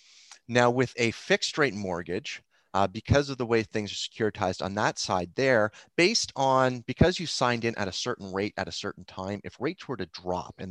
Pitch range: 95-120 Hz